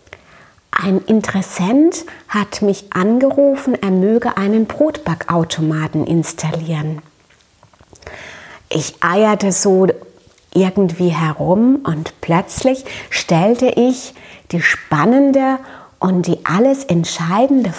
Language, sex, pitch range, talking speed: German, female, 170-245 Hz, 85 wpm